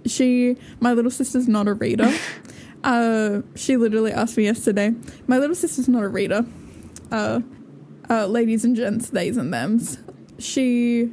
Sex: female